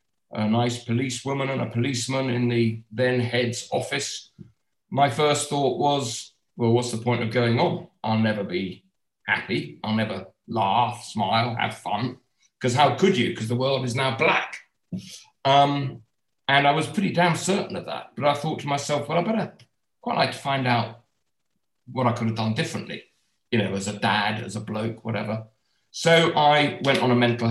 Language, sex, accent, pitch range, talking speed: English, male, British, 115-140 Hz, 185 wpm